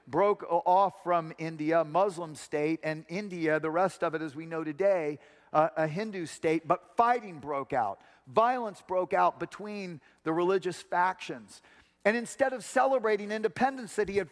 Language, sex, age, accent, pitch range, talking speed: English, male, 40-59, American, 150-190 Hz, 165 wpm